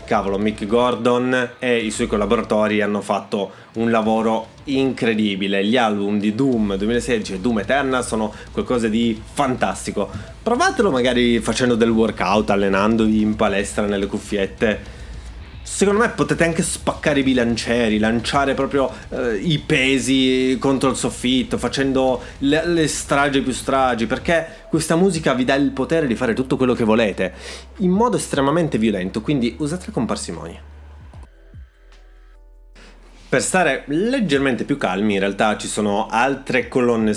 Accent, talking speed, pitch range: native, 140 wpm, 100-135 Hz